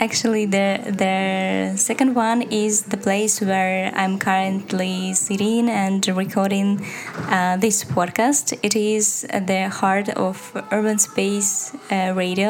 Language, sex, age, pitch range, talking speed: Ukrainian, female, 10-29, 190-230 Hz, 125 wpm